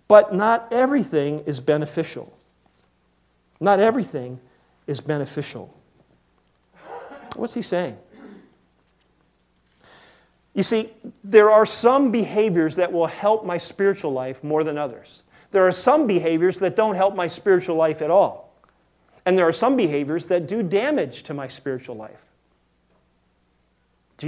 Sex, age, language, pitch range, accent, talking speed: male, 40-59, English, 130-190 Hz, American, 130 wpm